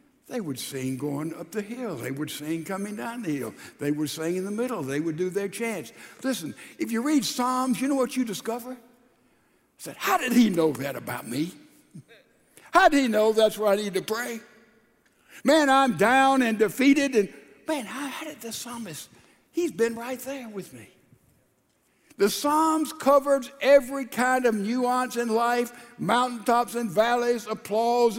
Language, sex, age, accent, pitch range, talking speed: English, male, 60-79, American, 205-265 Hz, 180 wpm